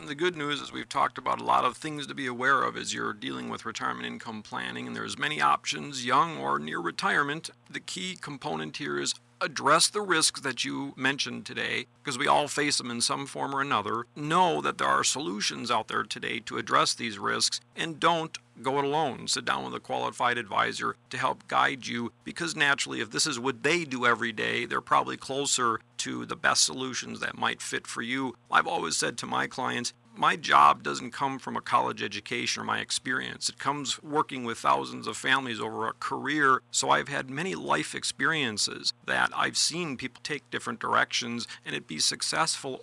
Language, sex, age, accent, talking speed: English, male, 40-59, American, 205 wpm